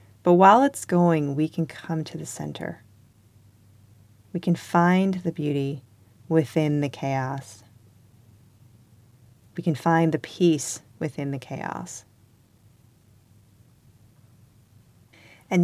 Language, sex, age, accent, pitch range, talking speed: English, female, 30-49, American, 125-180 Hz, 105 wpm